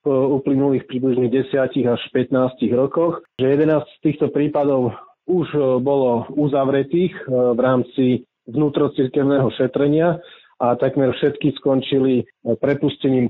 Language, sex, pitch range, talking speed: Slovak, male, 125-145 Hz, 110 wpm